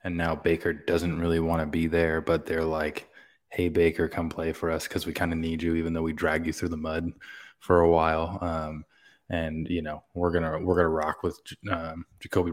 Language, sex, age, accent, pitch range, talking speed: English, male, 20-39, American, 80-85 Hz, 230 wpm